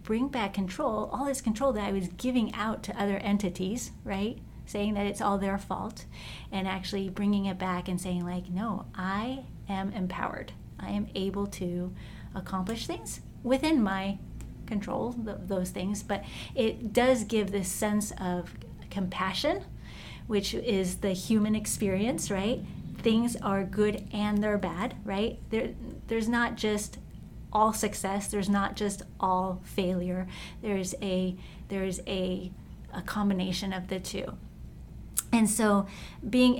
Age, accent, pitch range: 30-49, American, 185-215 Hz